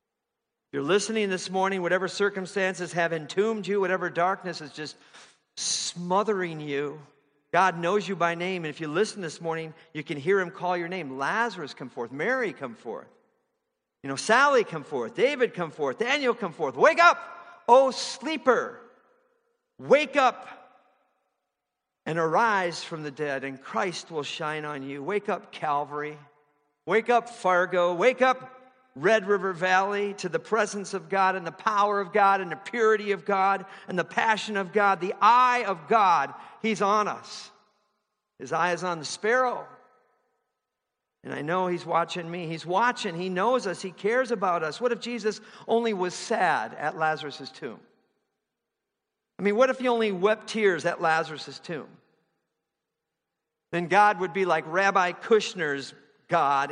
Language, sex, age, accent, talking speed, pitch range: English, male, 50-69, American, 165 wpm, 165-225 Hz